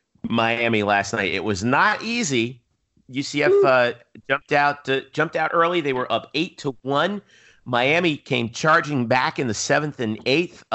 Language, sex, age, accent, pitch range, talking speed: English, male, 40-59, American, 110-140 Hz, 165 wpm